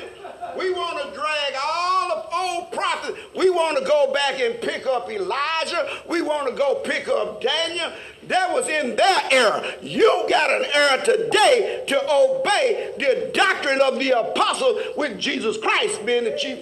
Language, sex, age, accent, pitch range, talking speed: English, male, 50-69, American, 285-470 Hz, 170 wpm